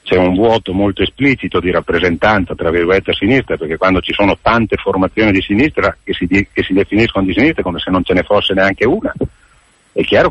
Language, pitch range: Italian, 95-115 Hz